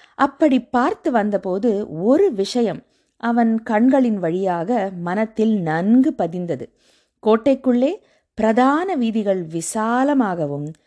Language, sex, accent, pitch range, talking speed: Tamil, female, native, 190-270 Hz, 85 wpm